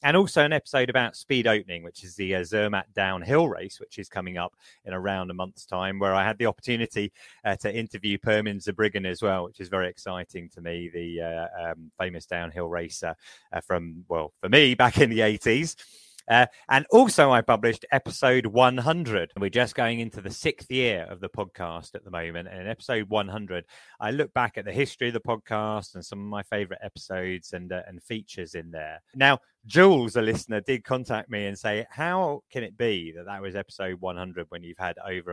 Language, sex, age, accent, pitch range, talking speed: English, male, 30-49, British, 90-125 Hz, 210 wpm